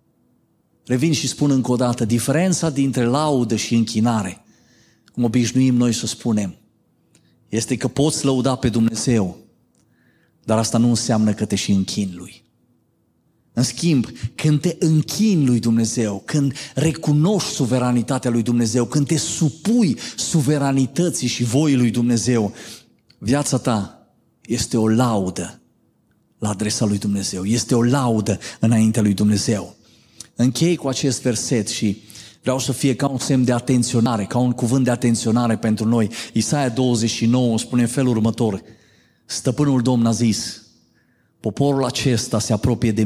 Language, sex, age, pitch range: Romanian, male, 30-49, 110-130 Hz